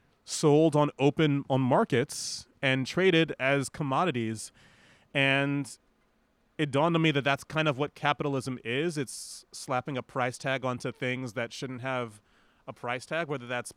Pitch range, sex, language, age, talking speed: 125-145 Hz, male, English, 30-49, 155 wpm